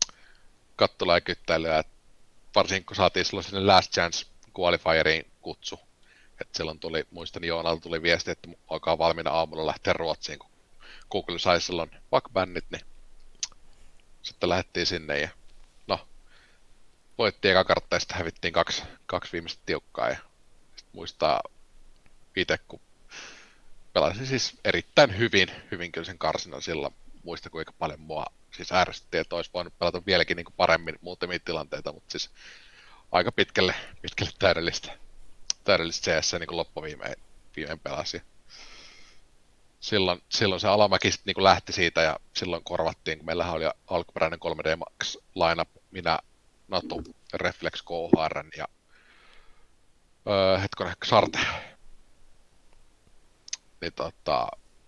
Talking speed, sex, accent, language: 120 wpm, male, native, Finnish